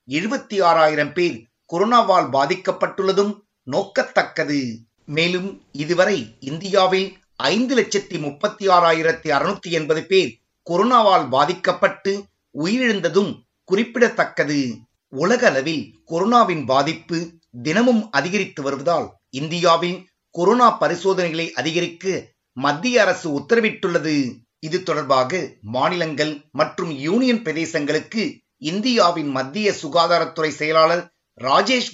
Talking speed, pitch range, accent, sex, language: 60 wpm, 155-195 Hz, native, male, Tamil